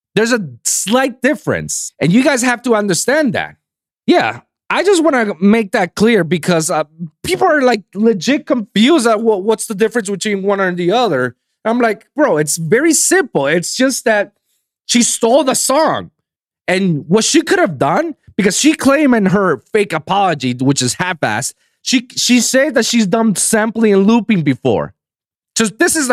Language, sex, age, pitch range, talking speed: English, male, 30-49, 160-235 Hz, 175 wpm